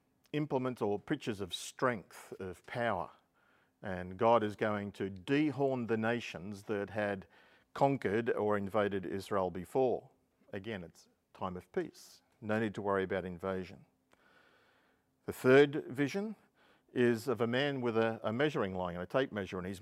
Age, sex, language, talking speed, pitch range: 50-69, male, English, 150 wpm, 95-125 Hz